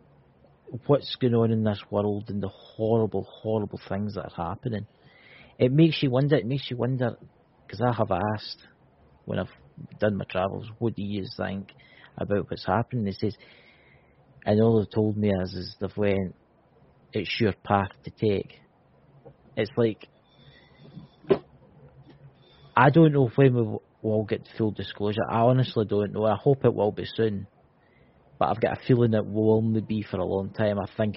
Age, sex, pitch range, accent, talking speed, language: 40-59, male, 100-120 Hz, British, 170 wpm, English